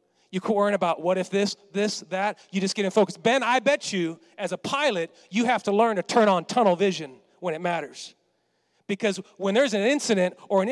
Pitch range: 170-225 Hz